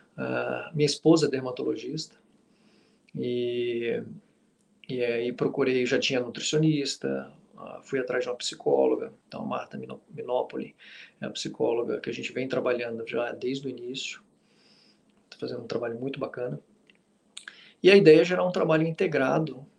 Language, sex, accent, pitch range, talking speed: Portuguese, male, Brazilian, 125-170 Hz, 145 wpm